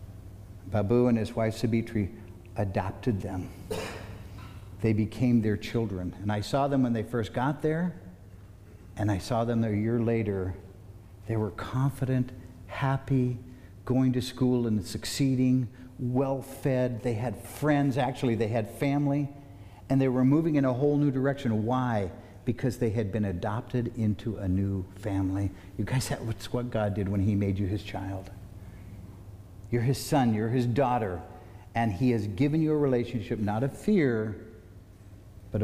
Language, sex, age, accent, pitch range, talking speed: English, male, 60-79, American, 100-130 Hz, 155 wpm